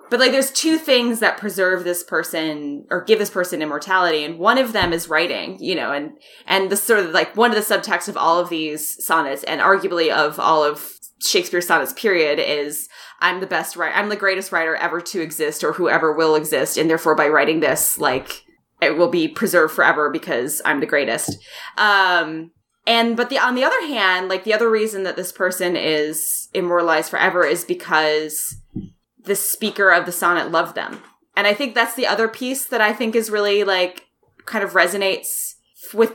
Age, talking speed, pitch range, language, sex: 20-39, 200 wpm, 165-215 Hz, English, female